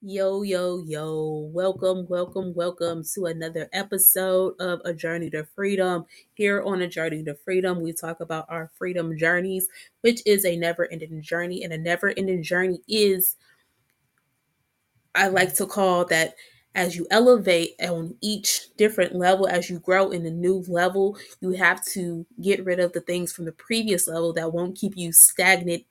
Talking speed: 165 wpm